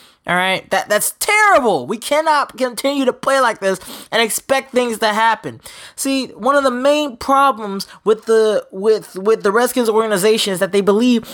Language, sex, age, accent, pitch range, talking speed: English, male, 20-39, American, 225-350 Hz, 180 wpm